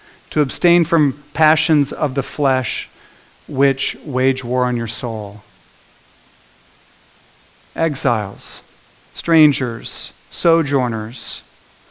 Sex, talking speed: male, 80 wpm